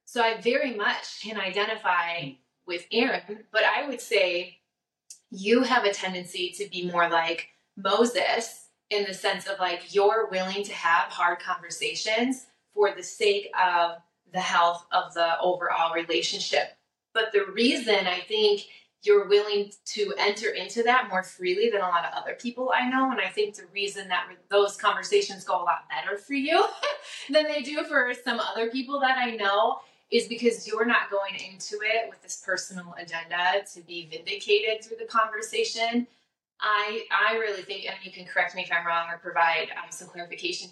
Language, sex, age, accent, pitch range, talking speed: English, female, 20-39, American, 180-235 Hz, 180 wpm